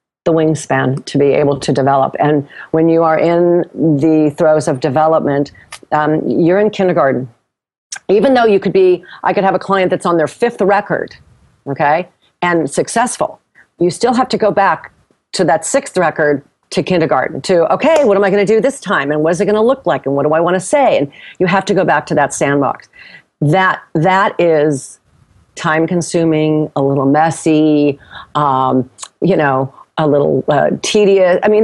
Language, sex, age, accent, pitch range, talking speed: English, female, 40-59, American, 150-185 Hz, 190 wpm